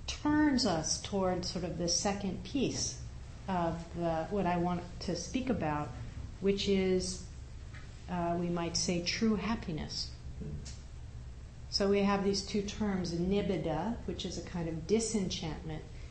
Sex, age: female, 40-59